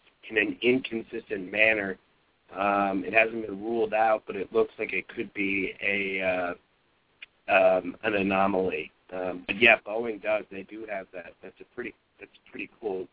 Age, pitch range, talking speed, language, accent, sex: 40-59, 95-110 Hz, 175 wpm, English, American, male